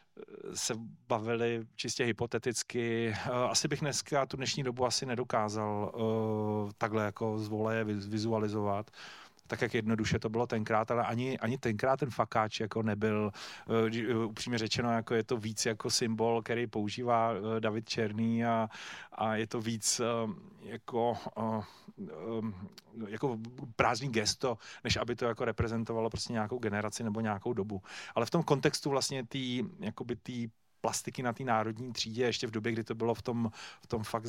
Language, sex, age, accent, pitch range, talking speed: Czech, male, 30-49, native, 110-125 Hz, 155 wpm